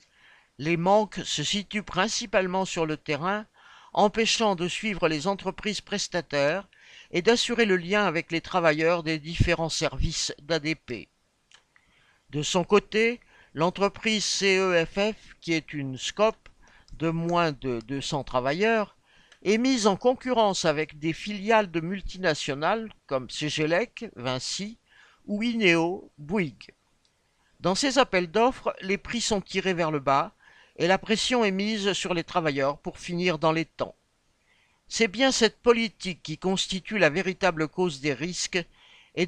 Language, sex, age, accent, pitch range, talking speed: French, male, 50-69, French, 160-210 Hz, 135 wpm